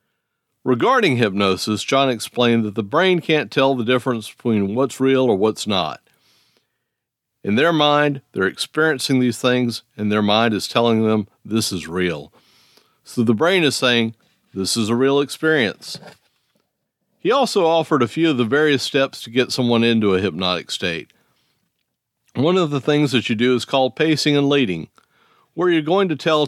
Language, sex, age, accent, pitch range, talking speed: English, male, 50-69, American, 115-145 Hz, 170 wpm